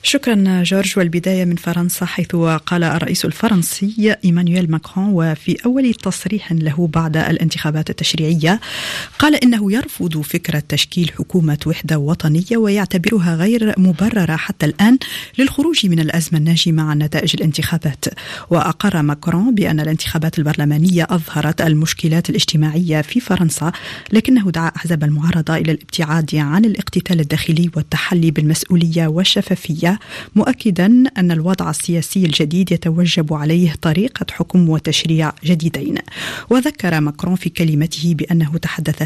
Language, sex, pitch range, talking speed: Arabic, female, 160-185 Hz, 120 wpm